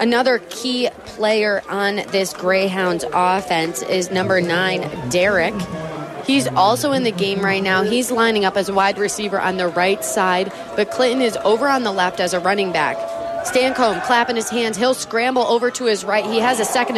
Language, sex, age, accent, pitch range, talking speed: English, female, 20-39, American, 200-255 Hz, 190 wpm